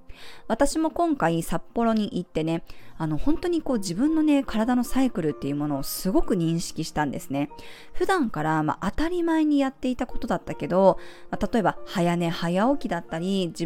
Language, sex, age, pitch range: Japanese, female, 20-39, 165-265 Hz